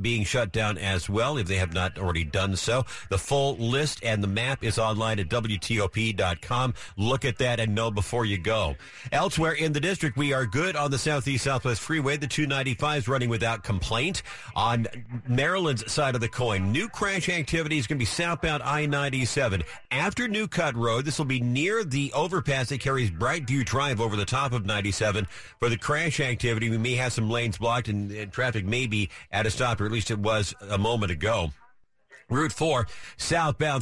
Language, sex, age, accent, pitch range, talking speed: English, male, 50-69, American, 110-140 Hz, 190 wpm